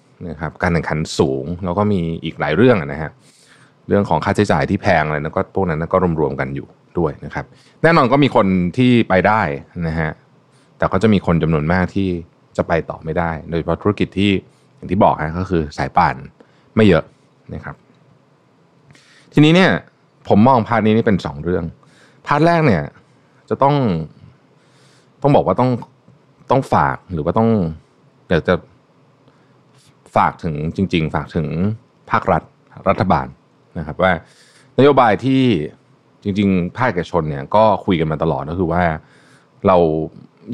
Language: Thai